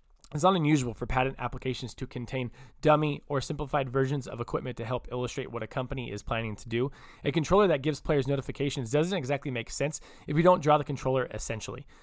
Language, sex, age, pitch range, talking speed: English, male, 20-39, 125-165 Hz, 205 wpm